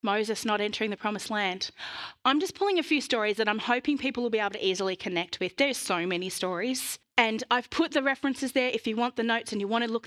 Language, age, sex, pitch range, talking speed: English, 20-39, female, 195-260 Hz, 255 wpm